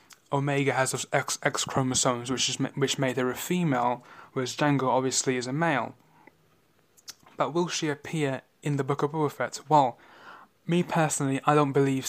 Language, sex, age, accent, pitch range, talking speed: English, male, 10-29, British, 130-145 Hz, 175 wpm